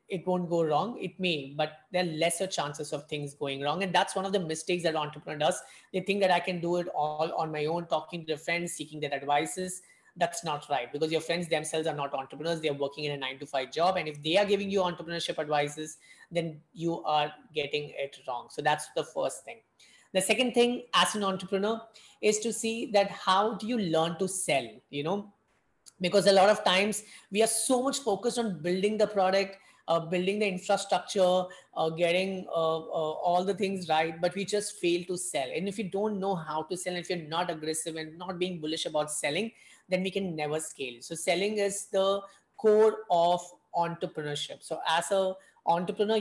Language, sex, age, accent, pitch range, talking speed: English, female, 20-39, Indian, 160-195 Hz, 215 wpm